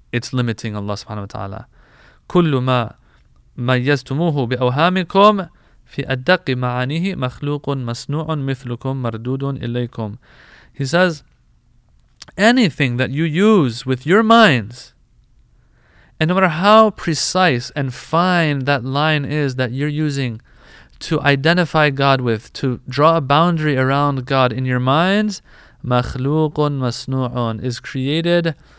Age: 30-49